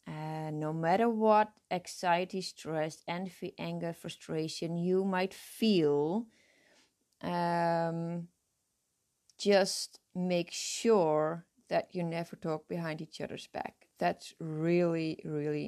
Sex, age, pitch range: female, 20-39, 160-185 Hz